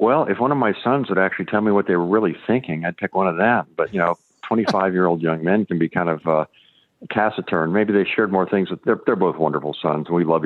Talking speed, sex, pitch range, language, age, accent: 260 wpm, male, 80-95 Hz, English, 50-69, American